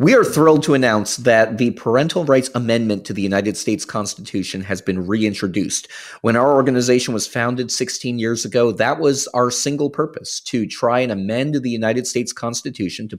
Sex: male